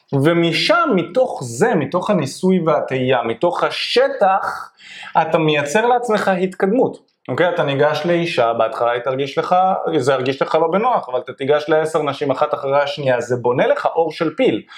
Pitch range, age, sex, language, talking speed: 125-170 Hz, 20-39, male, Hebrew, 160 wpm